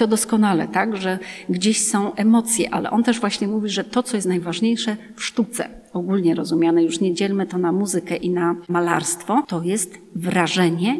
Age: 30-49